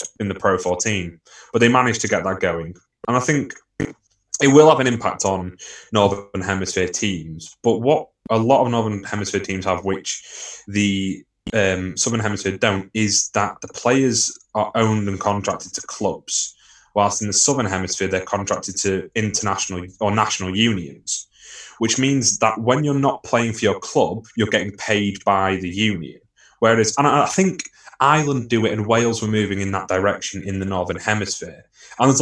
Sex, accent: male, British